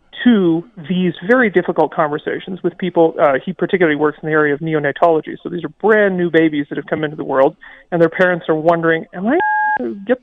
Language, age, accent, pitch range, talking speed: English, 40-59, American, 160-215 Hz, 215 wpm